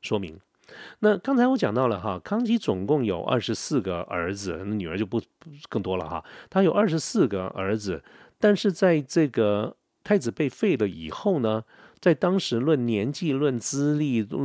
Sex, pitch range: male, 95-140 Hz